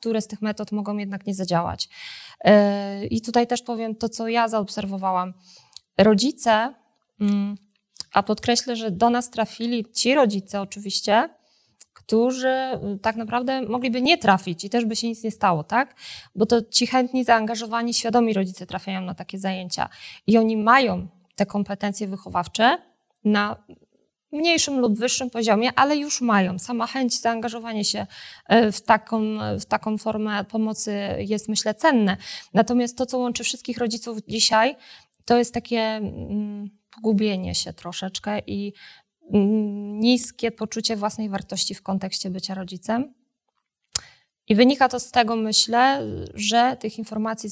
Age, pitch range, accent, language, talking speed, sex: 20-39, 200-240 Hz, native, Polish, 140 wpm, female